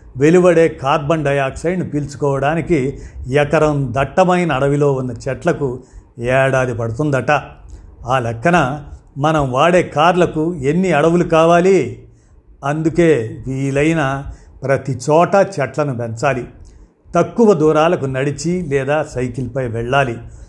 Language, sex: Telugu, male